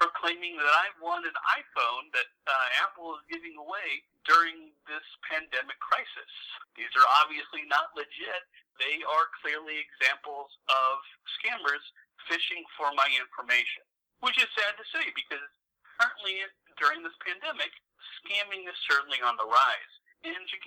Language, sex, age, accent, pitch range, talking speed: English, male, 50-69, American, 155-235 Hz, 140 wpm